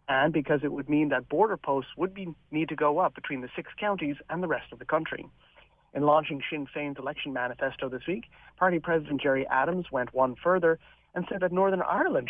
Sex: male